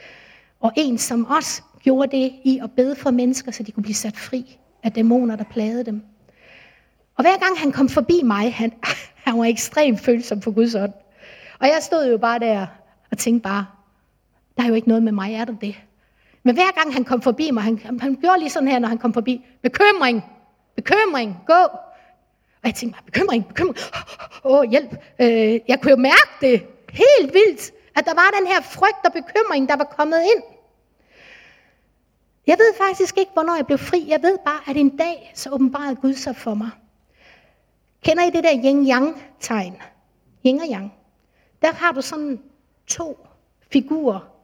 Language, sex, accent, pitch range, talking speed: Danish, female, native, 235-320 Hz, 190 wpm